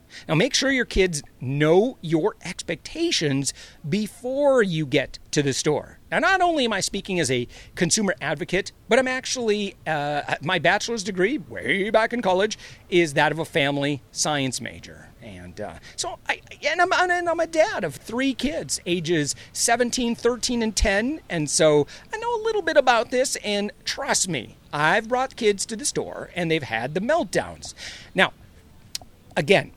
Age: 40-59